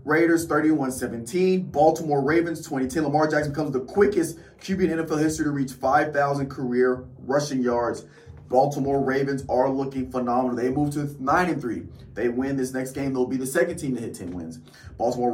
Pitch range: 120-145 Hz